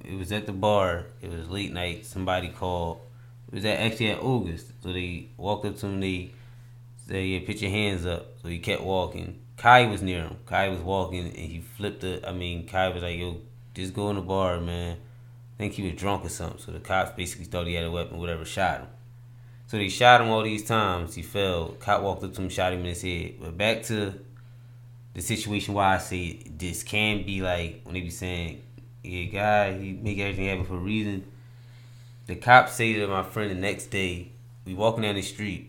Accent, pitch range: American, 90-115 Hz